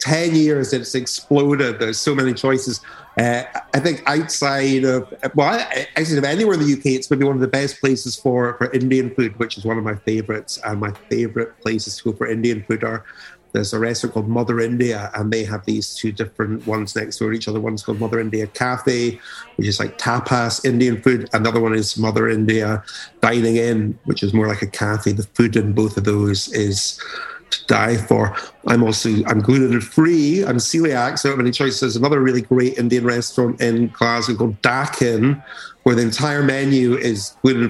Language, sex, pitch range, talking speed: English, male, 110-135 Hz, 205 wpm